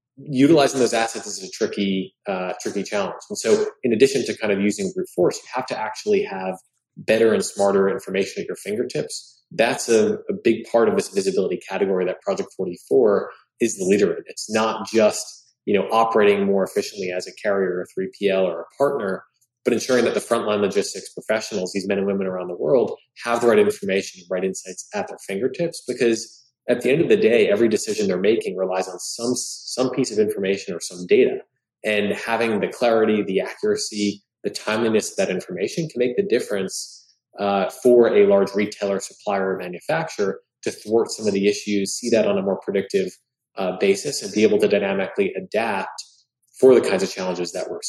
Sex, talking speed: male, 200 wpm